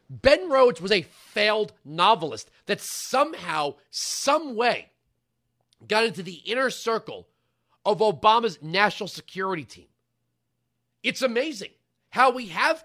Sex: male